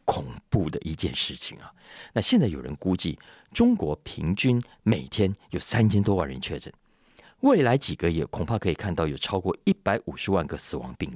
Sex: male